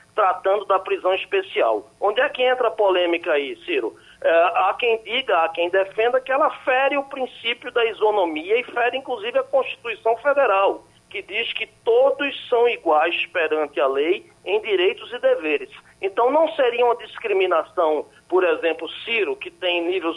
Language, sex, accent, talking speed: Portuguese, male, Brazilian, 165 wpm